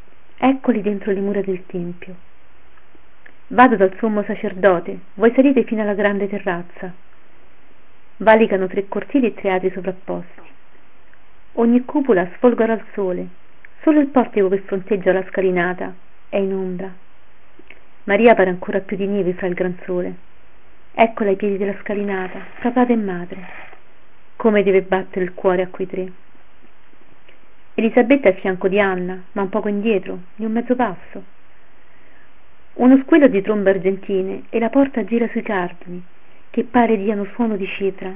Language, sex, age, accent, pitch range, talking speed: Italian, female, 40-59, native, 190-225 Hz, 150 wpm